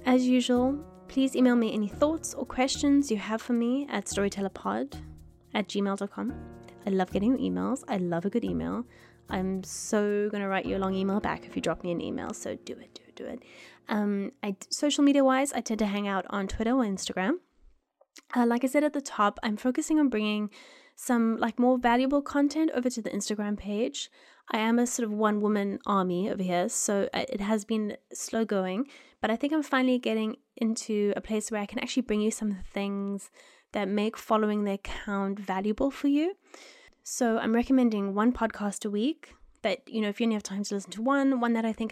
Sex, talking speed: female, 215 wpm